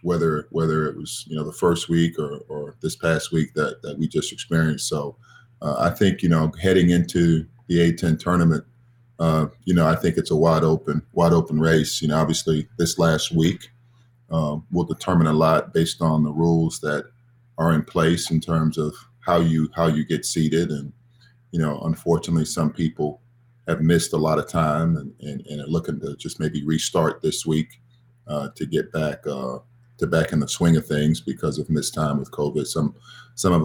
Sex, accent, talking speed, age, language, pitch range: male, American, 205 wpm, 40-59, English, 80-90 Hz